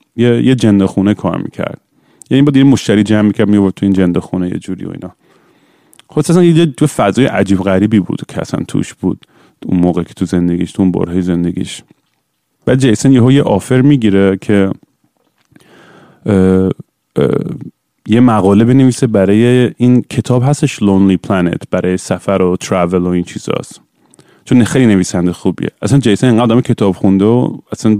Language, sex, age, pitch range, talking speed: Persian, male, 30-49, 95-125 Hz, 160 wpm